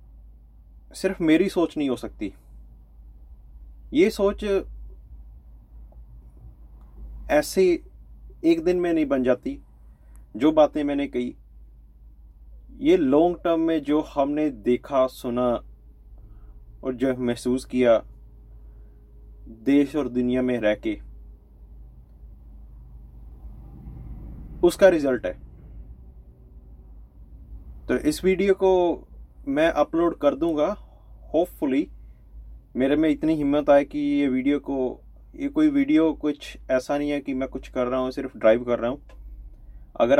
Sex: male